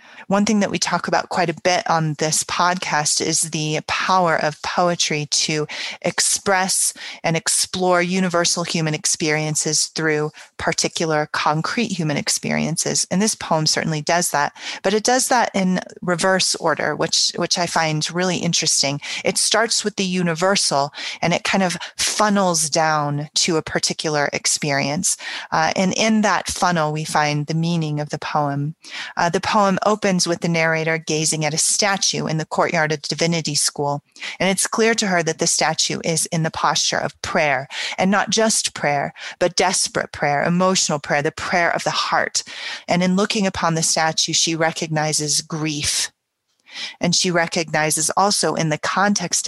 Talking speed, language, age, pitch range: 165 wpm, English, 30-49, 155-185 Hz